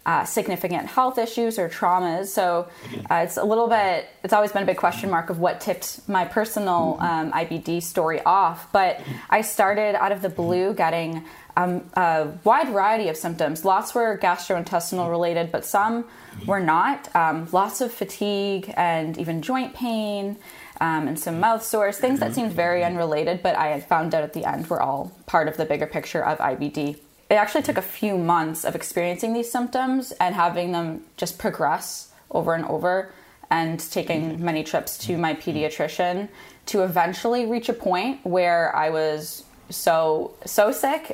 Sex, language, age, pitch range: female, English, 10-29, 165-205 Hz